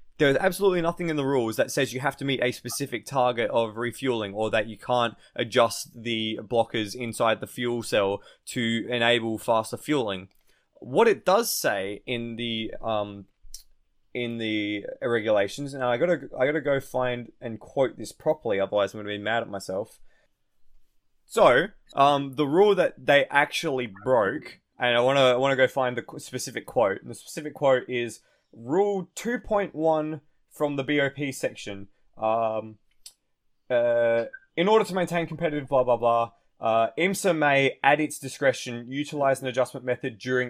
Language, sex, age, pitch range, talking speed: English, male, 20-39, 115-145 Hz, 170 wpm